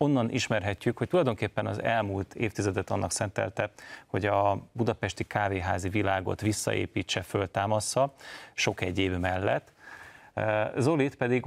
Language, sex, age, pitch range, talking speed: Hungarian, male, 30-49, 95-115 Hz, 110 wpm